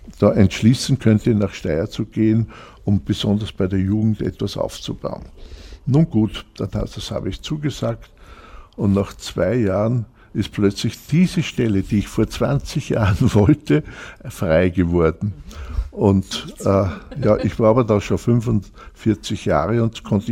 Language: German